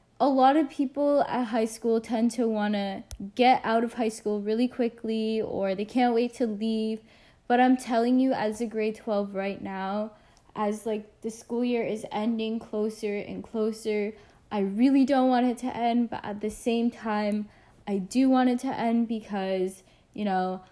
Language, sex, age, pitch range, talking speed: English, female, 10-29, 205-240 Hz, 190 wpm